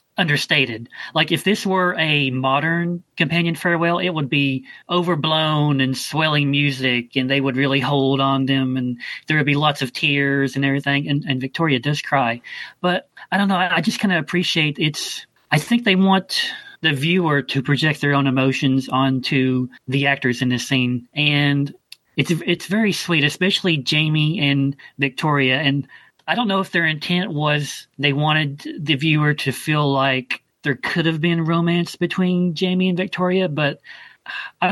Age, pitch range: 40-59, 135-165 Hz